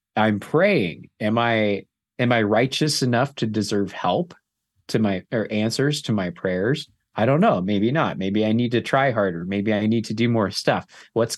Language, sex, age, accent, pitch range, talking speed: English, male, 30-49, American, 110-145 Hz, 195 wpm